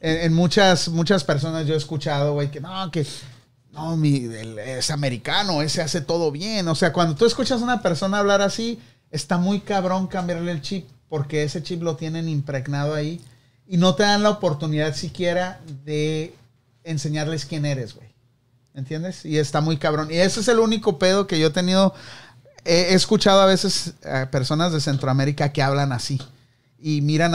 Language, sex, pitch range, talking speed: Spanish, male, 135-180 Hz, 180 wpm